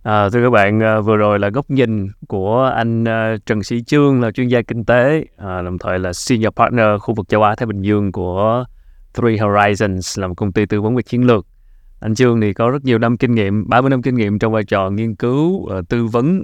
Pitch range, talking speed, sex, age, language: 100-120 Hz, 240 wpm, male, 20-39, Vietnamese